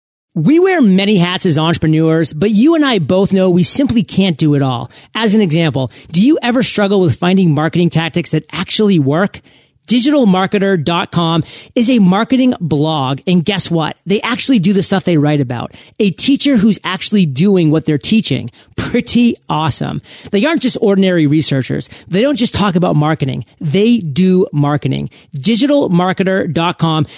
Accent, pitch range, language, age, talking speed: American, 165-215 Hz, English, 40-59, 160 wpm